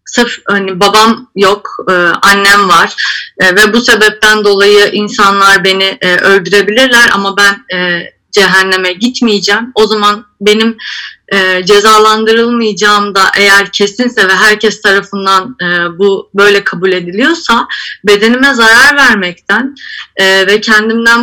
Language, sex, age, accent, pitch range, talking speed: Turkish, female, 30-49, native, 195-235 Hz, 120 wpm